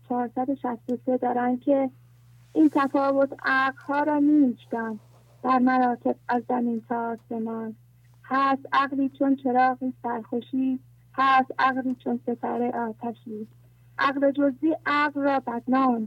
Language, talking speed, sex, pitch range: English, 105 wpm, female, 235-275 Hz